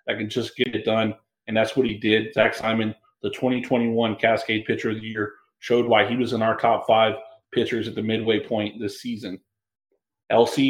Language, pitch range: English, 110-130 Hz